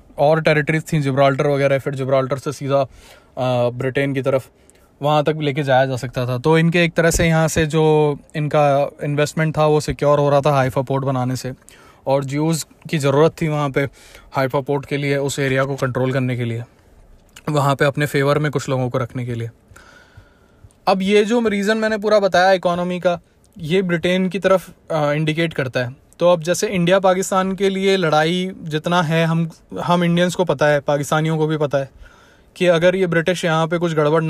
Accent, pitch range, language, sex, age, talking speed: native, 140-175 Hz, Hindi, male, 20-39, 200 wpm